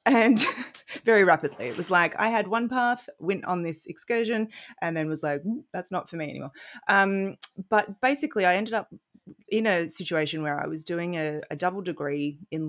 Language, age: English, 30-49